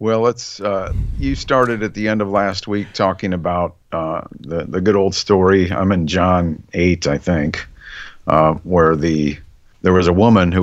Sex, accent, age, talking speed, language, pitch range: male, American, 50-69, 180 wpm, English, 90-115 Hz